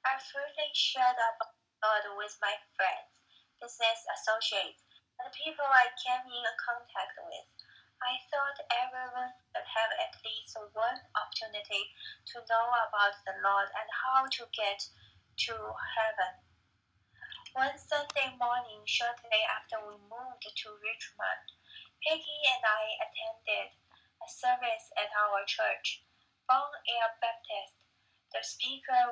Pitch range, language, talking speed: 215-265 Hz, English, 125 wpm